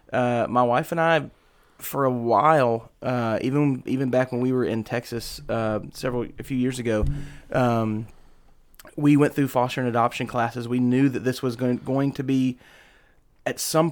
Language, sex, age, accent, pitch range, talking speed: English, male, 30-49, American, 115-135 Hz, 180 wpm